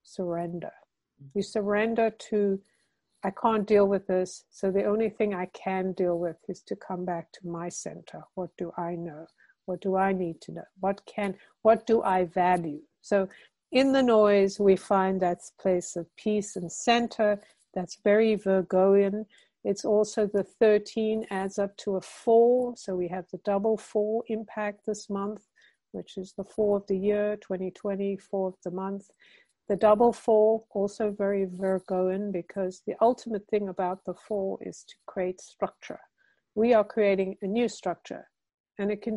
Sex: female